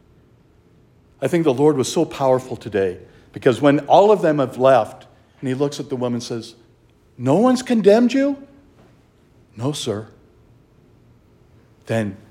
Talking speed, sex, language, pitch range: 145 wpm, male, English, 130-205 Hz